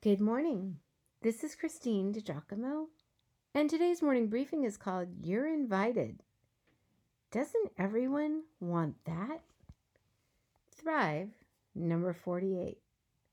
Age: 50-69